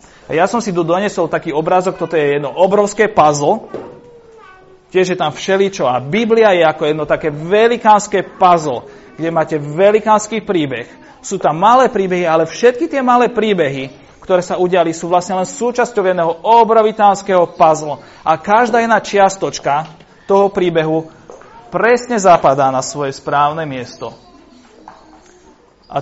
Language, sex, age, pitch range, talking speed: Slovak, male, 40-59, 145-205 Hz, 140 wpm